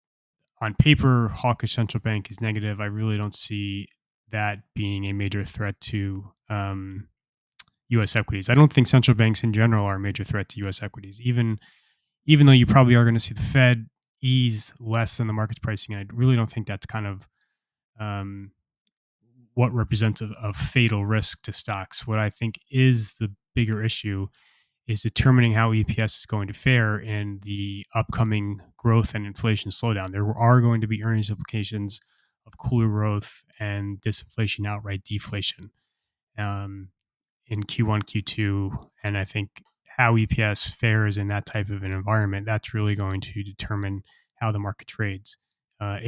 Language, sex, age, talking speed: English, male, 20-39, 170 wpm